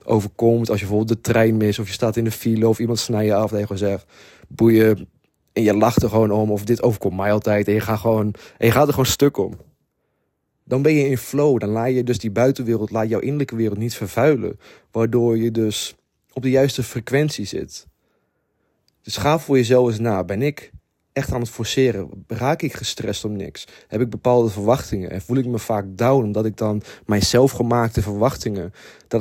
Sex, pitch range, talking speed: male, 105-125 Hz, 210 wpm